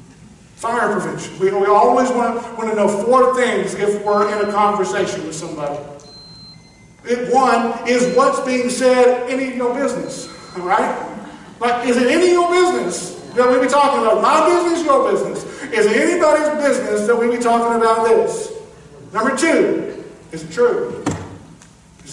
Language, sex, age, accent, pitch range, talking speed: English, male, 50-69, American, 190-255 Hz, 170 wpm